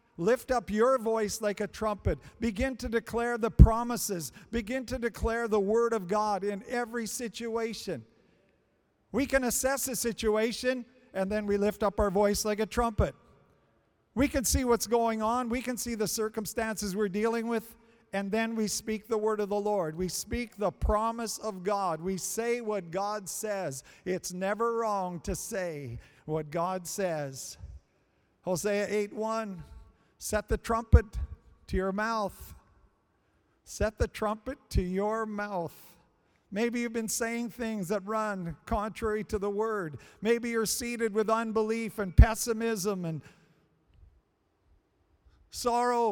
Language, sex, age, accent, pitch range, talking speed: English, male, 50-69, American, 200-235 Hz, 145 wpm